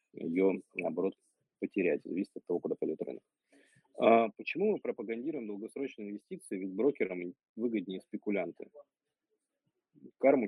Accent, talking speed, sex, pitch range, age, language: native, 115 wpm, male, 95-120 Hz, 20-39, Russian